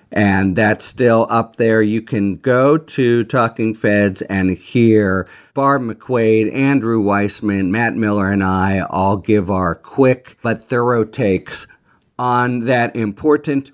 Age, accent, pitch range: 50-69, American, 100-125 Hz